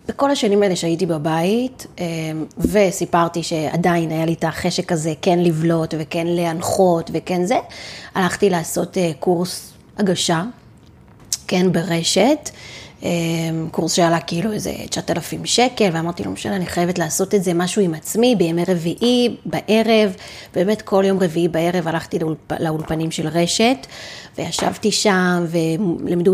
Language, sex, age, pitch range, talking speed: Hebrew, female, 30-49, 165-210 Hz, 130 wpm